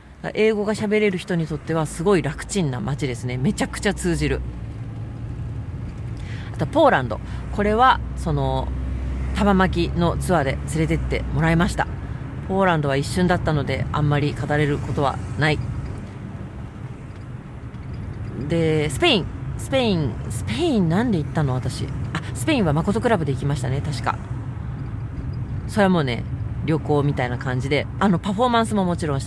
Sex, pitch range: female, 120-170 Hz